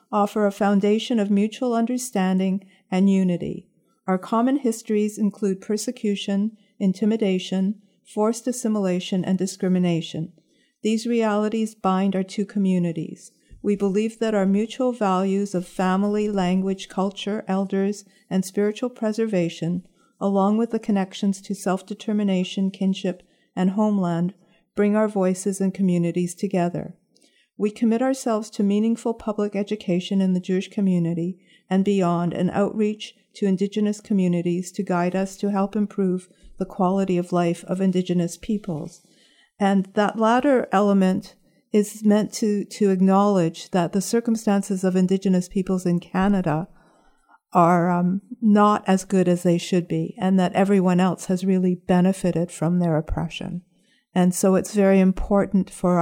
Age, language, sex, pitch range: 50-69, English, female, 185-210 Hz